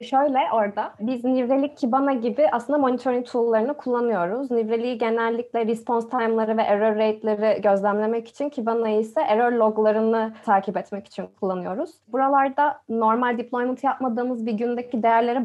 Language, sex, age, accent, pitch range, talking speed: Turkish, female, 20-39, native, 215-260 Hz, 130 wpm